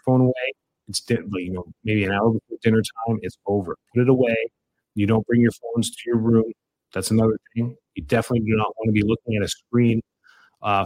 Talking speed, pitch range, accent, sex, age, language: 215 wpm, 95-120 Hz, American, male, 30-49, English